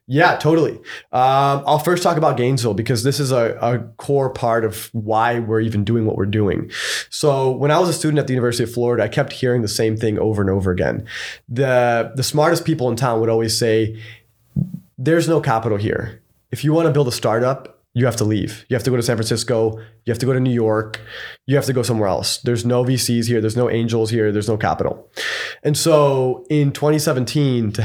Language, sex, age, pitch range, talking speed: English, male, 20-39, 110-140 Hz, 225 wpm